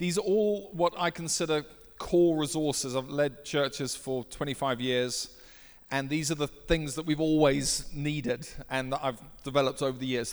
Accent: British